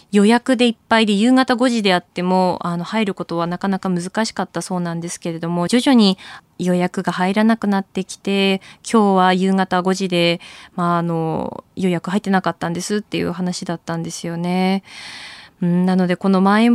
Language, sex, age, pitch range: Japanese, female, 20-39, 180-235 Hz